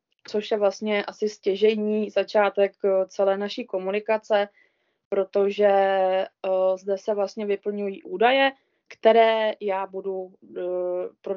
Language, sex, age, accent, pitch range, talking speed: Czech, female, 20-39, native, 195-220 Hz, 100 wpm